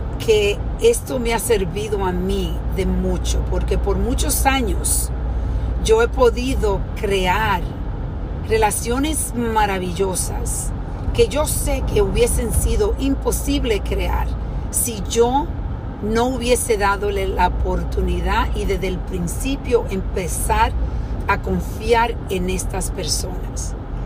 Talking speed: 110 wpm